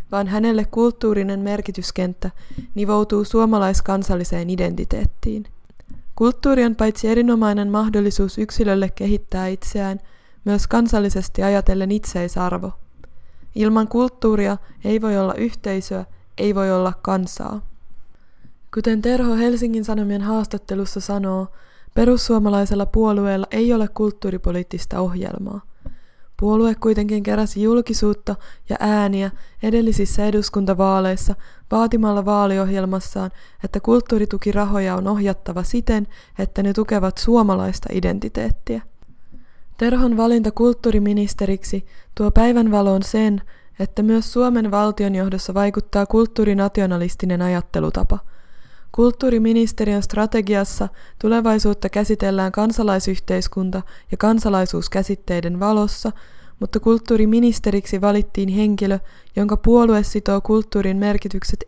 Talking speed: 90 wpm